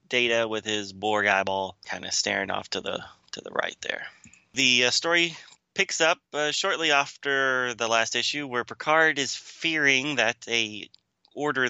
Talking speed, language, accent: 170 wpm, English, American